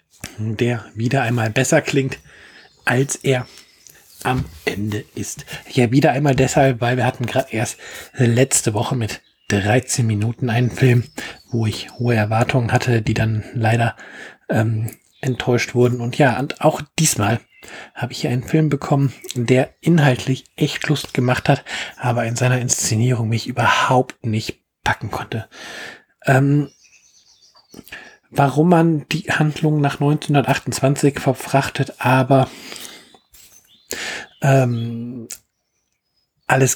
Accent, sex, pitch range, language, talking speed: German, male, 115-135 Hz, German, 120 wpm